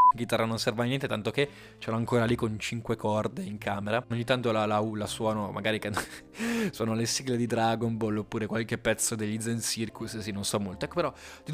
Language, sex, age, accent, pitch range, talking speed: Italian, male, 20-39, native, 115-150 Hz, 230 wpm